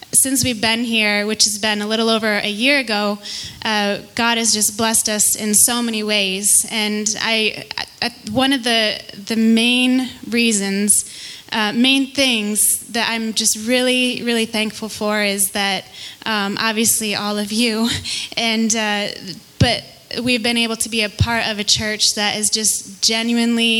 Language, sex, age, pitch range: English, female, 20-39, 210-230 Hz